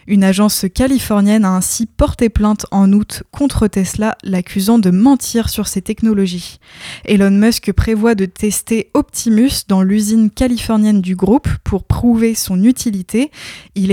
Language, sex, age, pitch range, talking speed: French, female, 20-39, 195-235 Hz, 140 wpm